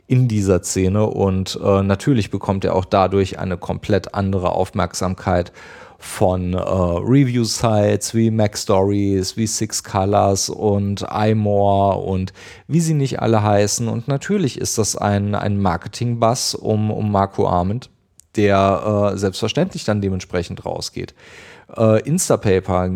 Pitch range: 100-115 Hz